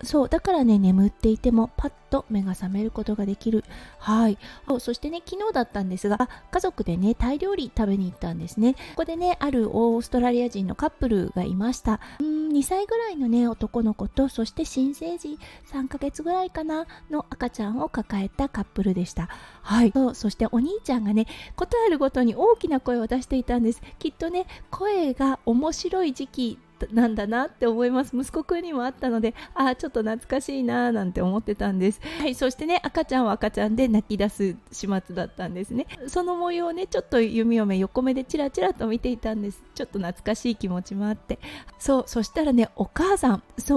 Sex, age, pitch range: female, 20-39, 215-285 Hz